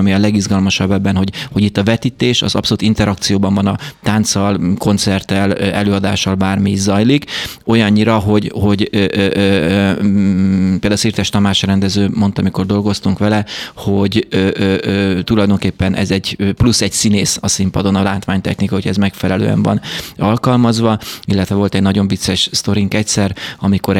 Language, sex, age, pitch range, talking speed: Hungarian, male, 30-49, 100-115 Hz, 150 wpm